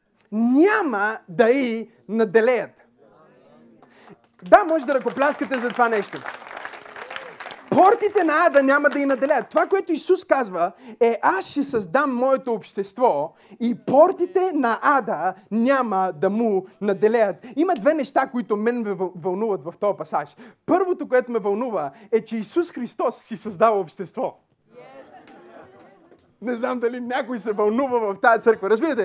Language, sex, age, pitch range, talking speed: Bulgarian, male, 30-49, 170-245 Hz, 140 wpm